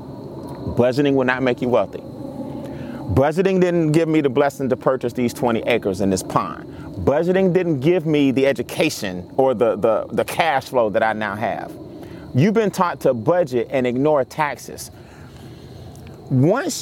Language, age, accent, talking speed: English, 30-49, American, 155 wpm